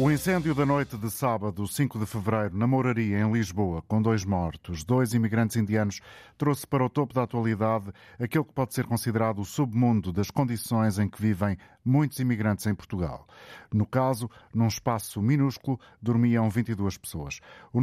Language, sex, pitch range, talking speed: Portuguese, male, 105-130 Hz, 170 wpm